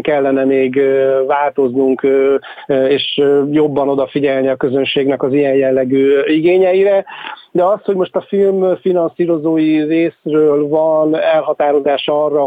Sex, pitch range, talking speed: male, 140-160 Hz, 110 wpm